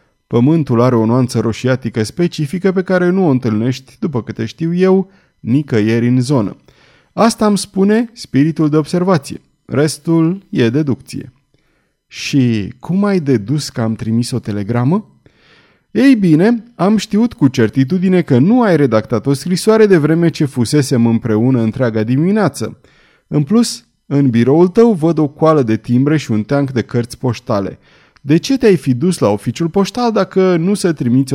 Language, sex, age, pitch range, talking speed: Romanian, male, 30-49, 120-180 Hz, 160 wpm